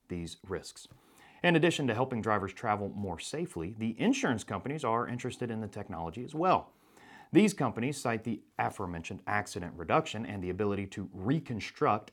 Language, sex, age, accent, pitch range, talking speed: English, male, 30-49, American, 100-140 Hz, 160 wpm